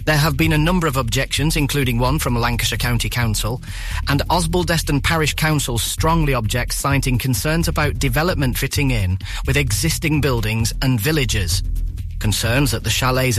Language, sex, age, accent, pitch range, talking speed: English, male, 30-49, British, 105-140 Hz, 150 wpm